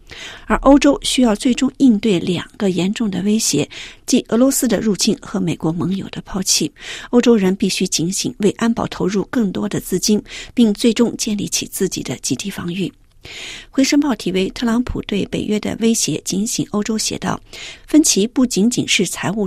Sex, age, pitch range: female, 50-69, 185-240 Hz